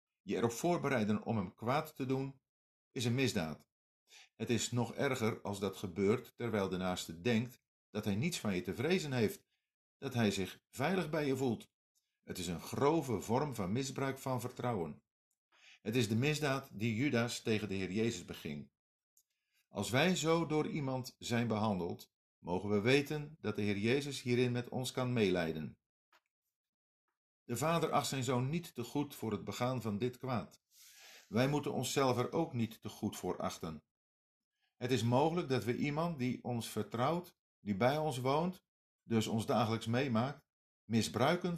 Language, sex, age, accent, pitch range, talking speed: Dutch, male, 50-69, Dutch, 110-140 Hz, 170 wpm